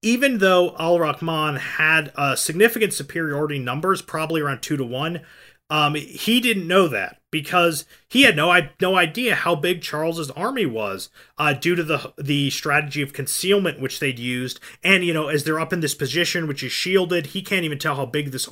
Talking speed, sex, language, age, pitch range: 190 wpm, male, English, 30-49, 130-170 Hz